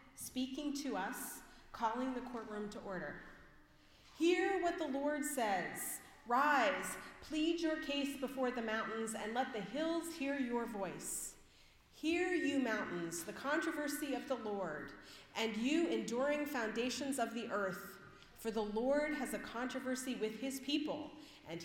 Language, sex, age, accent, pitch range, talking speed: English, female, 40-59, American, 200-285 Hz, 145 wpm